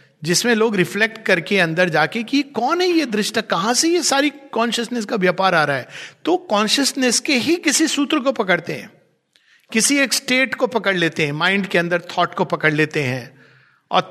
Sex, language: male, English